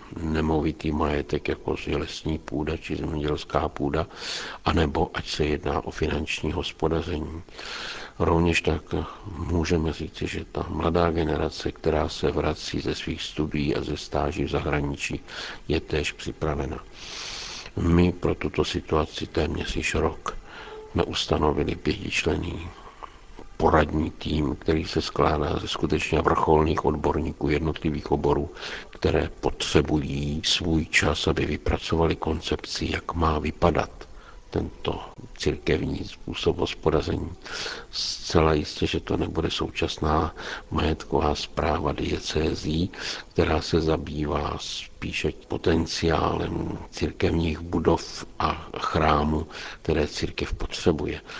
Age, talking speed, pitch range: 60-79, 110 wpm, 75-85 Hz